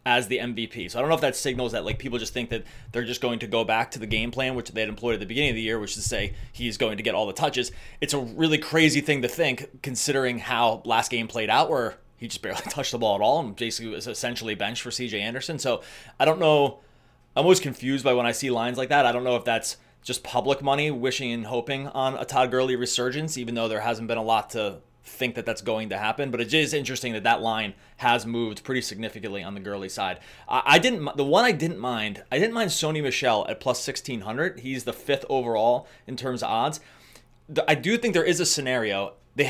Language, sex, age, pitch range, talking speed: English, male, 20-39, 115-145 Hz, 255 wpm